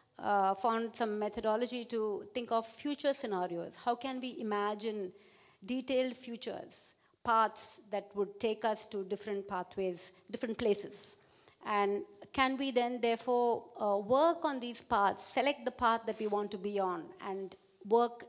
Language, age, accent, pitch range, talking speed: German, 50-69, Indian, 200-235 Hz, 150 wpm